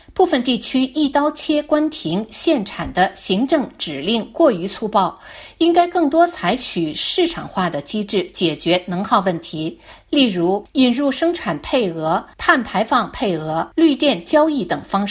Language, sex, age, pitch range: Chinese, female, 50-69, 190-305 Hz